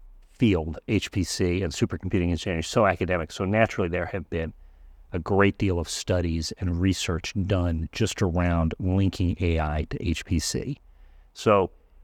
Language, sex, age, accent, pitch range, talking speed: English, male, 40-59, American, 90-110 Hz, 135 wpm